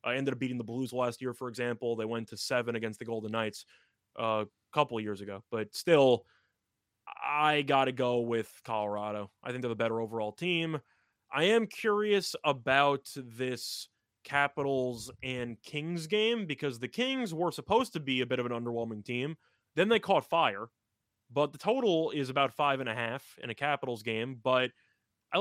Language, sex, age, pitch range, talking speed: English, male, 20-39, 125-175 Hz, 185 wpm